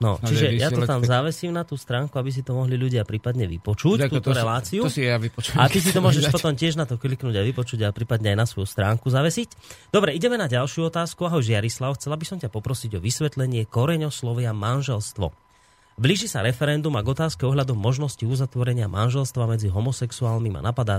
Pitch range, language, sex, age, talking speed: 115-150 Hz, Slovak, male, 30-49, 195 wpm